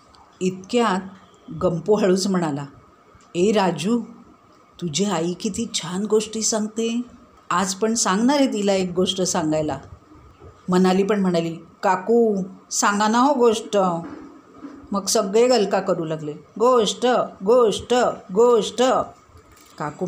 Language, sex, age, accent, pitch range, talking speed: Marathi, female, 50-69, native, 185-260 Hz, 110 wpm